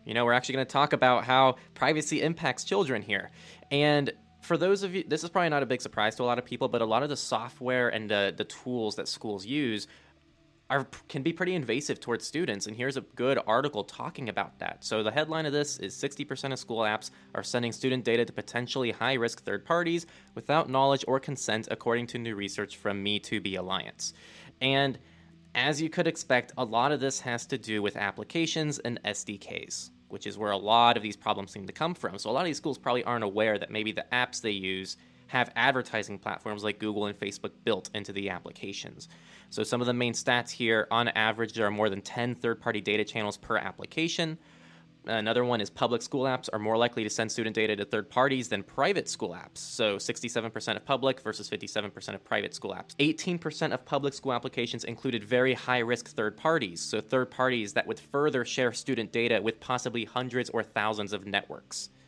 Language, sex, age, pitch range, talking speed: English, male, 20-39, 105-135 Hz, 215 wpm